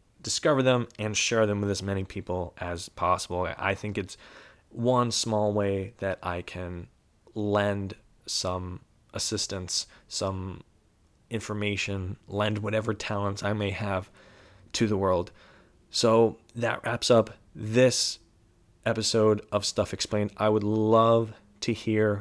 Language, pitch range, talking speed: English, 100-115 Hz, 130 wpm